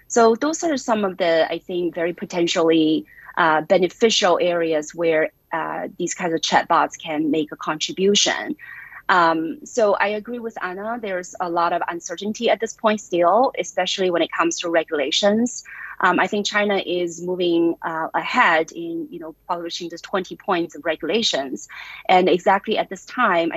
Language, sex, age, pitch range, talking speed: English, female, 30-49, 165-205 Hz, 170 wpm